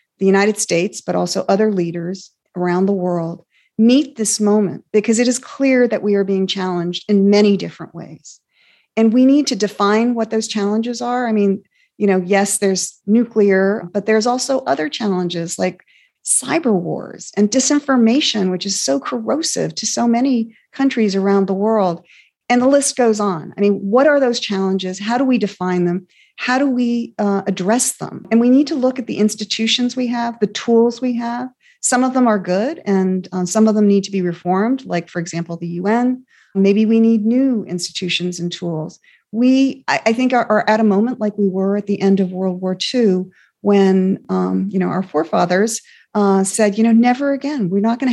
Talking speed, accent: 200 wpm, American